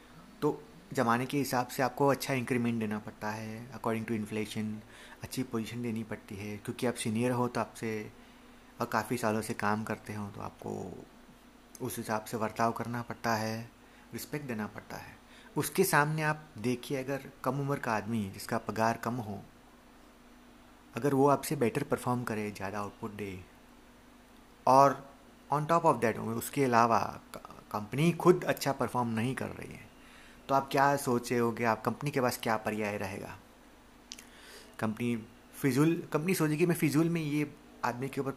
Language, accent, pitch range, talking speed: Hindi, native, 110-140 Hz, 170 wpm